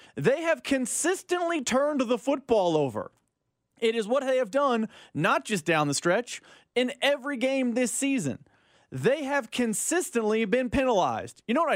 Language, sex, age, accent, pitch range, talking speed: English, male, 30-49, American, 200-260 Hz, 160 wpm